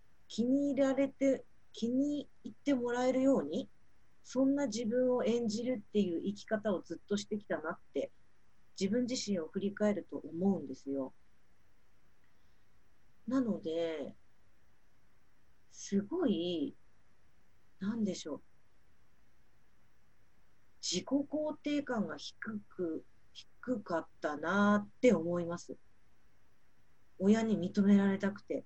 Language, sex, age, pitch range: Japanese, female, 40-59, 175-260 Hz